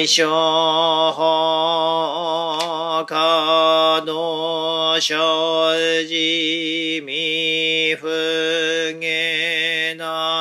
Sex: male